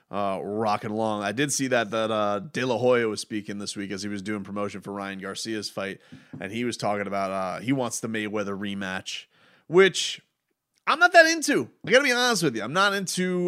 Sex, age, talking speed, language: male, 30-49, 225 wpm, English